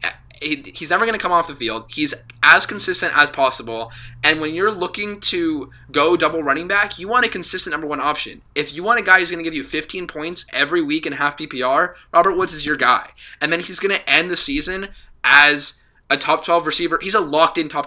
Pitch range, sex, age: 135-170 Hz, male, 10-29